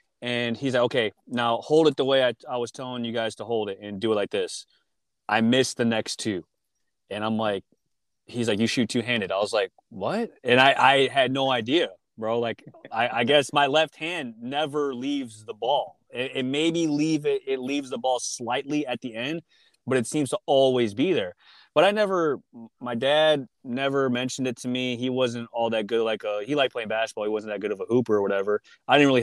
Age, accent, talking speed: 20-39, American, 230 wpm